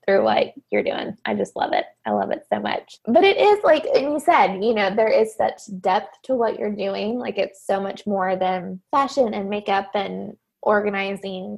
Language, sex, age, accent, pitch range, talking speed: English, female, 20-39, American, 200-245 Hz, 210 wpm